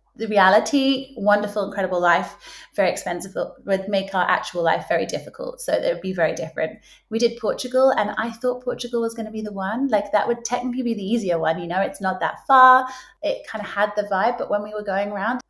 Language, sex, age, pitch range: English, female, 30-49, 195-245 Hz